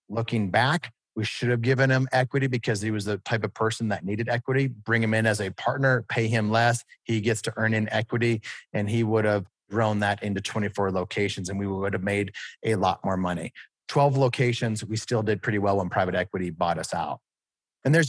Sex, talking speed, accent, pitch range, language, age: male, 220 wpm, American, 105-125 Hz, English, 30-49